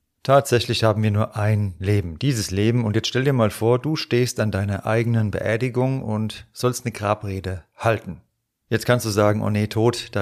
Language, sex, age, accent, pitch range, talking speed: German, male, 40-59, German, 105-120 Hz, 195 wpm